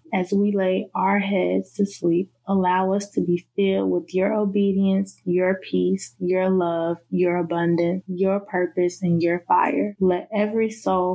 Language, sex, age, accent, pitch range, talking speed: English, female, 20-39, American, 180-200 Hz, 155 wpm